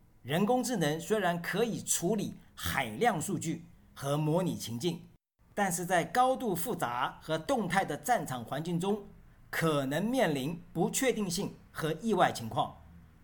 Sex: male